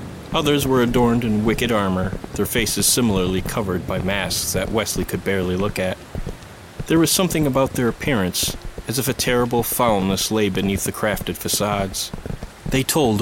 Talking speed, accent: 165 wpm, American